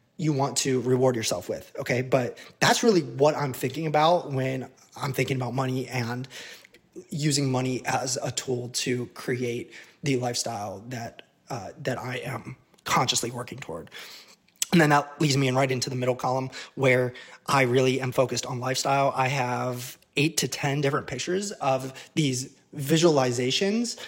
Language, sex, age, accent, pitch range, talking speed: English, male, 20-39, American, 130-145 Hz, 160 wpm